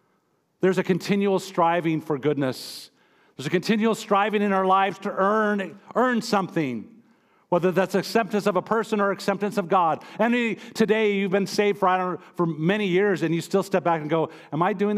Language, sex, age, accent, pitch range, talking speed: English, male, 50-69, American, 145-200 Hz, 190 wpm